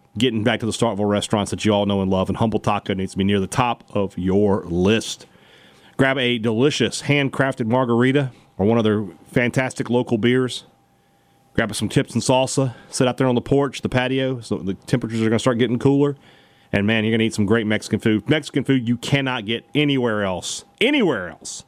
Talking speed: 215 wpm